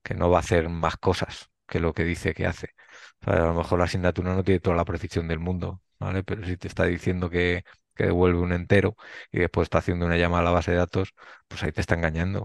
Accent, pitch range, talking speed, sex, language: Spanish, 85-95 Hz, 260 wpm, male, Spanish